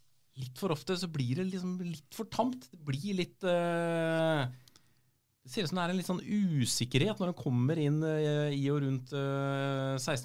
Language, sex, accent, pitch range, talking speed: English, male, Norwegian, 120-150 Hz, 165 wpm